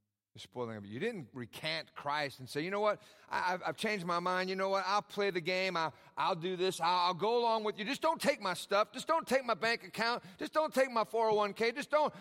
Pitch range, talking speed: 160-260 Hz, 225 wpm